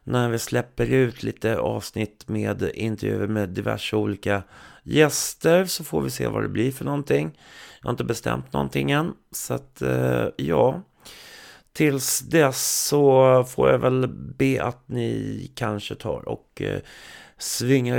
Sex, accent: male, native